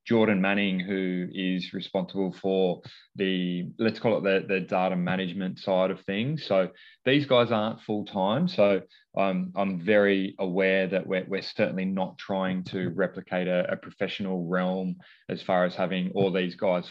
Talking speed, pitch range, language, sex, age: 165 wpm, 95-105 Hz, English, male, 20-39